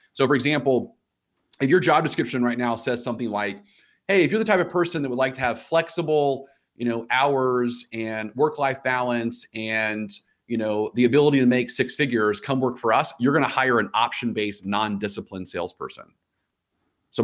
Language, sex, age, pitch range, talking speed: English, male, 30-49, 115-145 Hz, 190 wpm